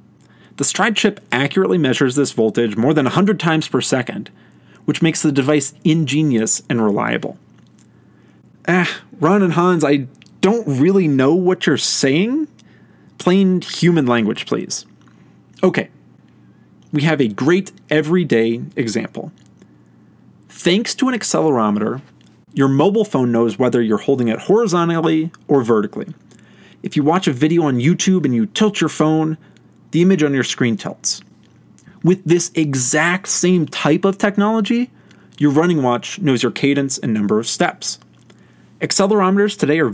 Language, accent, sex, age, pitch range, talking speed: English, American, male, 40-59, 125-180 Hz, 145 wpm